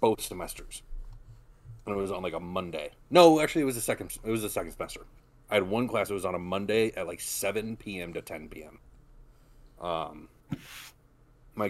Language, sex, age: English, male, 30-49